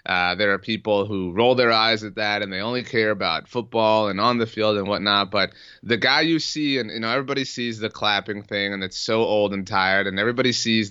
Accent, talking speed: American, 240 wpm